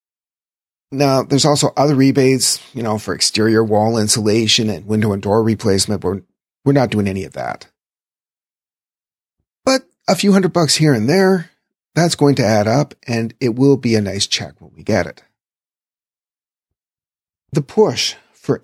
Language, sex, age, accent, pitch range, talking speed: English, male, 40-59, American, 105-140 Hz, 160 wpm